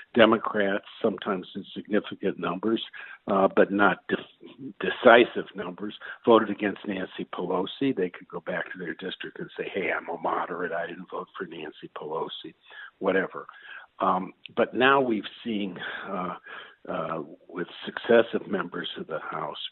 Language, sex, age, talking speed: English, male, 60-79, 145 wpm